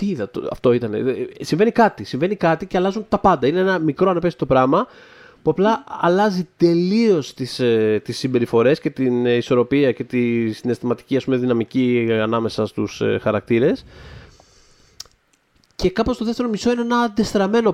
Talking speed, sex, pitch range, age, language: 135 wpm, male, 120-200 Hz, 20-39, Greek